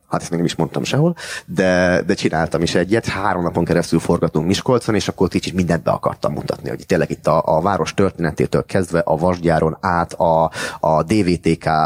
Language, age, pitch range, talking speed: Hungarian, 30-49, 85-115 Hz, 190 wpm